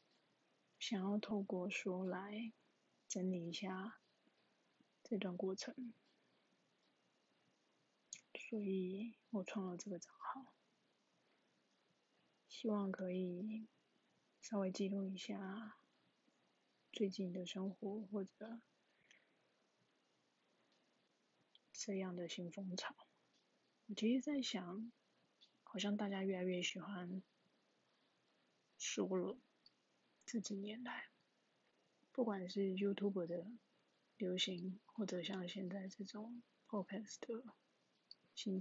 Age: 20-39